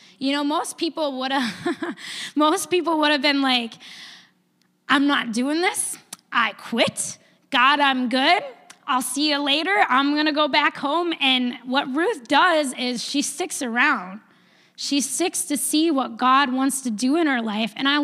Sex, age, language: female, 10-29, English